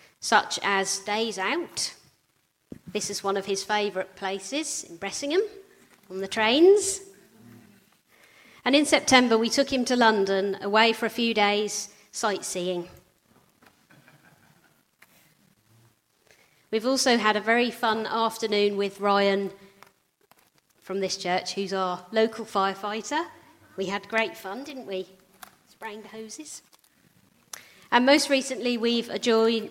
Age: 30-49